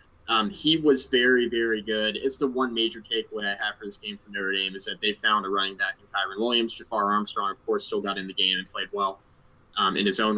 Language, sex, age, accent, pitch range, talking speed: English, male, 20-39, American, 105-130 Hz, 260 wpm